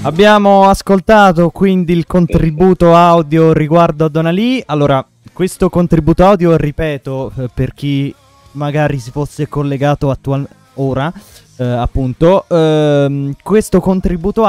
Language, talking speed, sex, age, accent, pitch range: Italian, 110 wpm, male, 20-39, native, 135-165 Hz